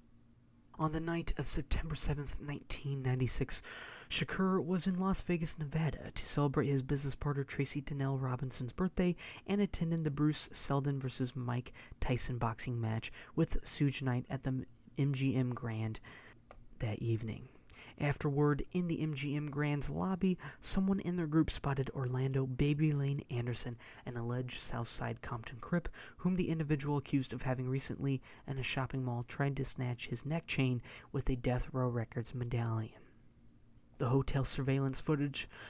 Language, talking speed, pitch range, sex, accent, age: English, 150 wpm, 125-150 Hz, male, American, 30-49